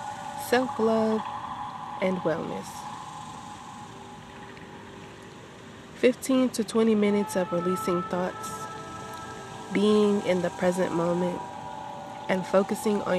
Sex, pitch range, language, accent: female, 180-245 Hz, English, American